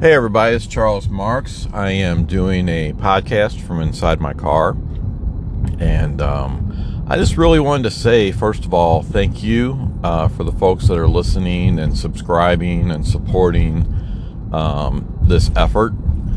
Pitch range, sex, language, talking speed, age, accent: 80-105 Hz, male, English, 150 wpm, 50-69, American